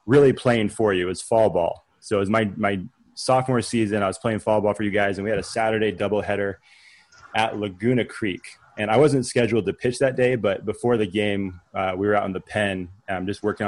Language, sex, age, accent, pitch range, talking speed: English, male, 20-39, American, 105-125 Hz, 235 wpm